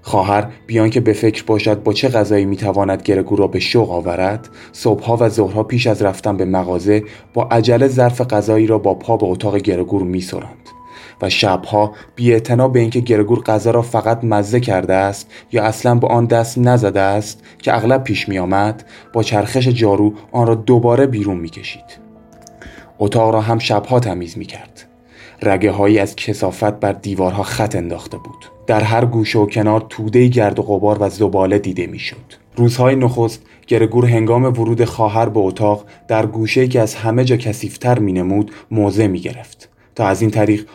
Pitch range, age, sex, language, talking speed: 100-120 Hz, 20-39, male, Persian, 175 wpm